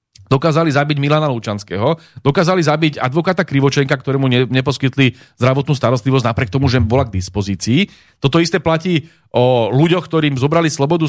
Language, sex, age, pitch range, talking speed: Slovak, male, 30-49, 130-160 Hz, 140 wpm